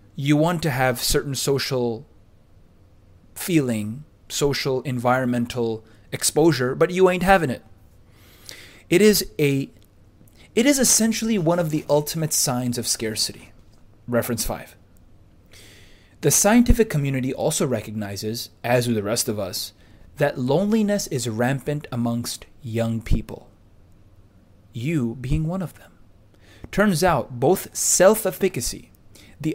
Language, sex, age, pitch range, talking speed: English, male, 30-49, 105-150 Hz, 120 wpm